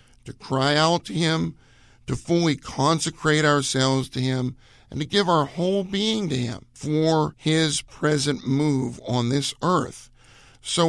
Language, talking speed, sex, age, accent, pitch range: English, 150 wpm, male, 50-69, American, 130-170 Hz